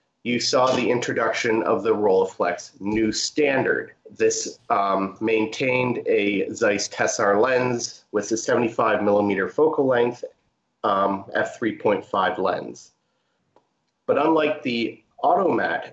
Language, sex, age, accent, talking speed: English, male, 30-49, American, 110 wpm